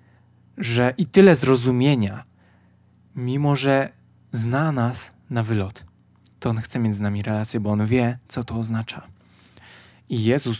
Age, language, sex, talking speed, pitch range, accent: 20-39, Polish, male, 140 wpm, 100-115 Hz, native